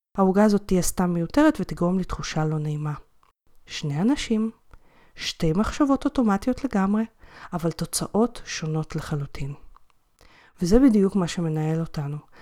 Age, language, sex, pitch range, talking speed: 30-49, Hebrew, female, 165-225 Hz, 115 wpm